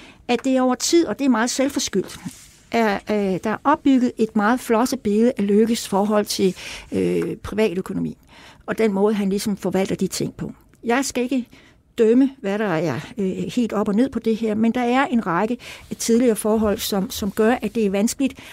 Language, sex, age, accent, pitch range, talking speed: Danish, female, 60-79, native, 195-245 Hz, 205 wpm